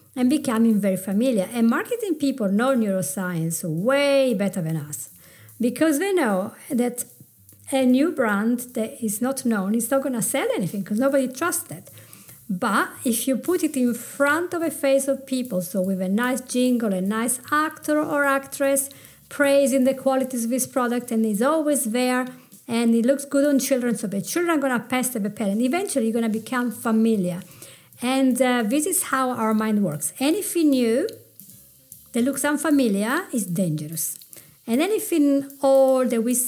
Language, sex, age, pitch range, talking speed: English, female, 50-69, 220-290 Hz, 180 wpm